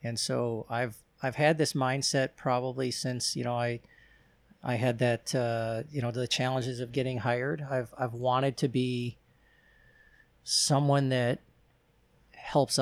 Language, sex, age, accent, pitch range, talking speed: English, male, 40-59, American, 125-150 Hz, 145 wpm